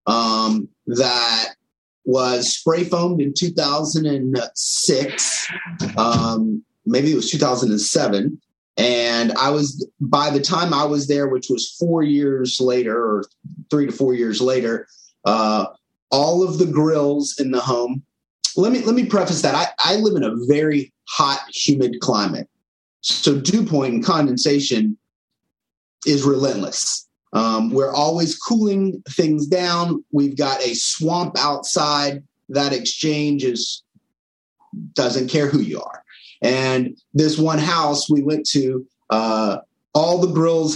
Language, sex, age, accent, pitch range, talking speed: English, male, 30-49, American, 125-160 Hz, 145 wpm